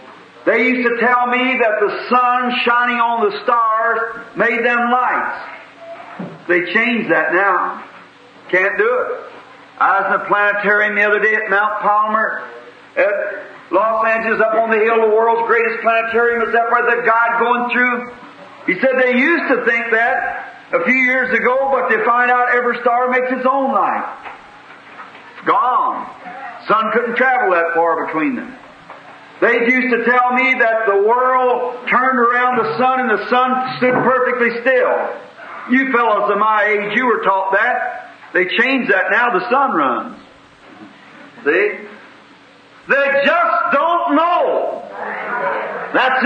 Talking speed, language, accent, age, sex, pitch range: 160 wpm, English, American, 50-69, male, 225-255 Hz